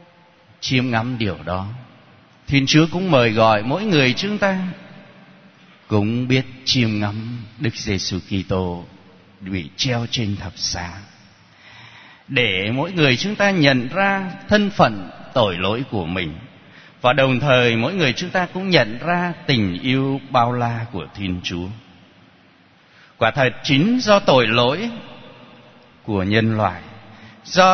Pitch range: 105-155 Hz